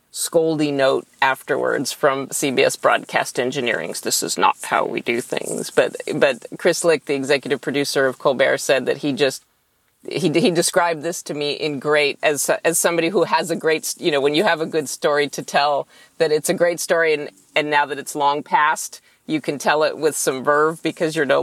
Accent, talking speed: American, 205 wpm